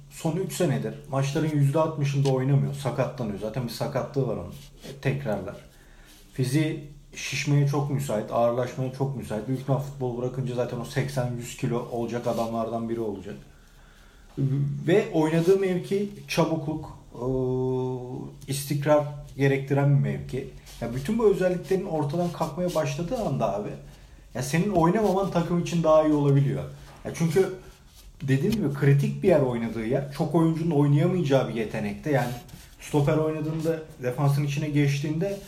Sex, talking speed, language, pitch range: male, 130 wpm, Turkish, 125-155 Hz